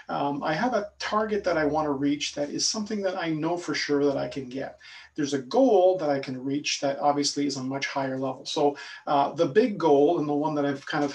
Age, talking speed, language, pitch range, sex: 40-59, 260 wpm, English, 140-160 Hz, male